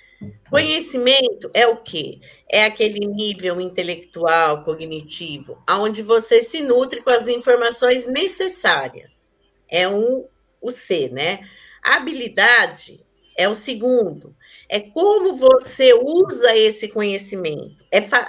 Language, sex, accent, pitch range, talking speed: Portuguese, female, Brazilian, 195-290 Hz, 115 wpm